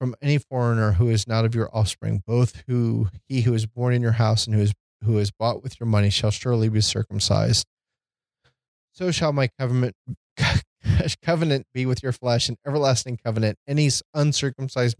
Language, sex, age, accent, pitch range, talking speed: English, male, 20-39, American, 105-130 Hz, 180 wpm